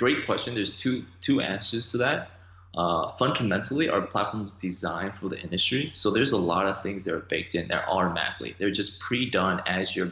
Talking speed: 210 wpm